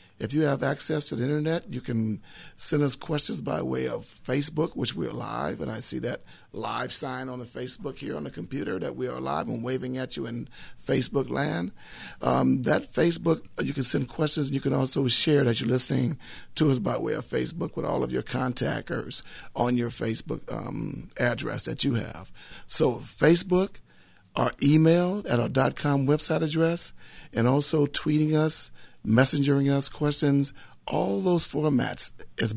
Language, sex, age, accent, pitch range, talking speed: English, male, 50-69, American, 120-150 Hz, 180 wpm